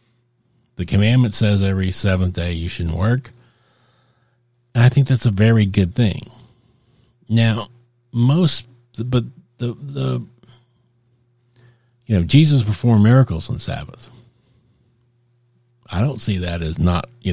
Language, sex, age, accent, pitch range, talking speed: English, male, 50-69, American, 95-120 Hz, 125 wpm